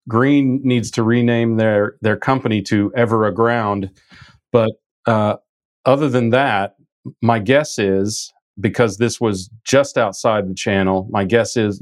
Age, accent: 40-59, American